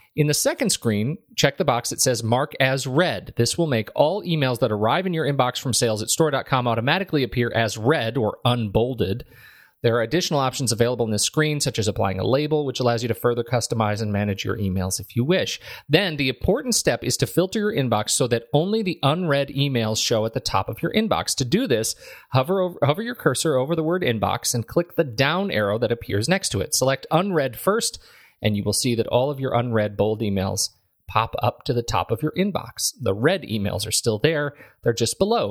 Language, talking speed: English, 225 wpm